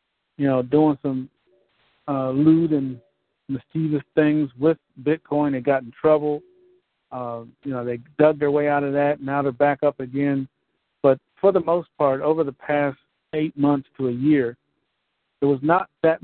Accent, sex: American, male